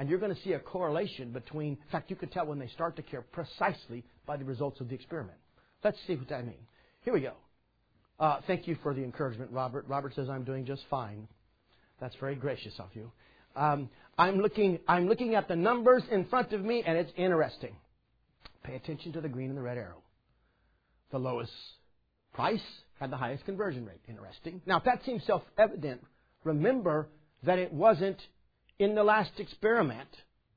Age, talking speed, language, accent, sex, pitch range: 50-69, 190 wpm, English, American, male, 125-175 Hz